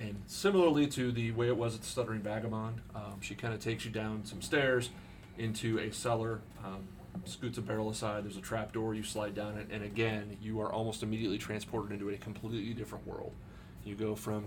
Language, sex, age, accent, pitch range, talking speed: English, male, 30-49, American, 105-115 Hz, 205 wpm